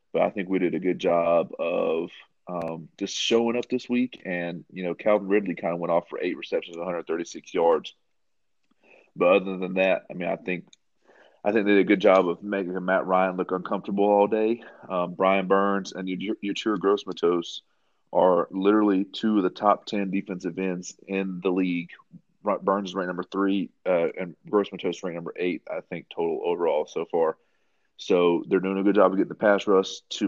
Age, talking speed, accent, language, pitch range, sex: 30-49, 195 wpm, American, English, 90-105 Hz, male